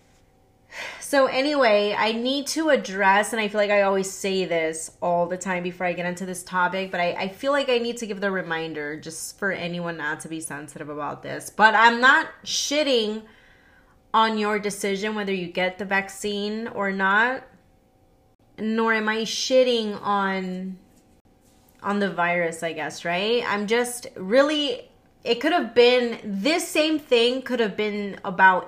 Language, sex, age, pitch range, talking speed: English, female, 20-39, 180-225 Hz, 170 wpm